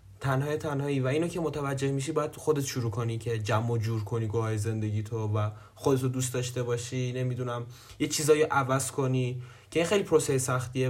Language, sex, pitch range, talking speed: Persian, male, 125-155 Hz, 185 wpm